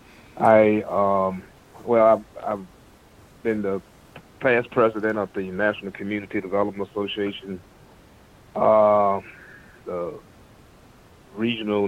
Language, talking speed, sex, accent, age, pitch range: English, 90 wpm, male, American, 40-59, 95-110 Hz